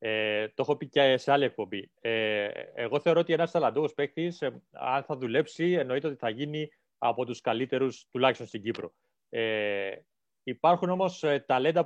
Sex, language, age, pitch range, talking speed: male, Greek, 30-49, 130-175 Hz, 165 wpm